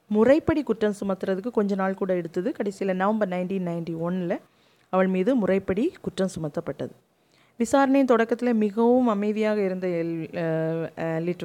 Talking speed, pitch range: 130 wpm, 175-210 Hz